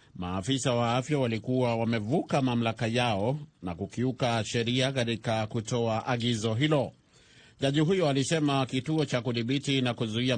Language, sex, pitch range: Swahili, male, 120-145 Hz